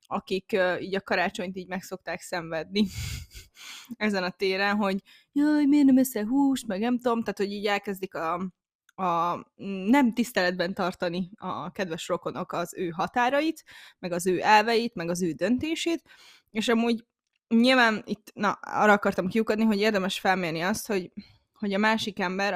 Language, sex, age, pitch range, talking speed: Hungarian, female, 20-39, 180-220 Hz, 160 wpm